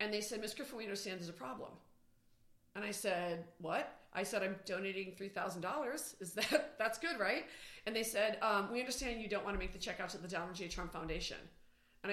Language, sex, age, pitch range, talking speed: English, female, 40-59, 180-225 Hz, 220 wpm